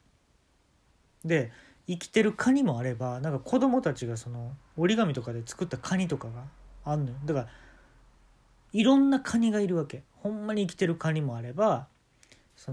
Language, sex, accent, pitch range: Japanese, male, native, 120-170 Hz